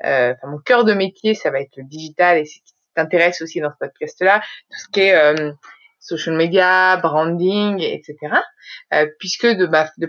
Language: French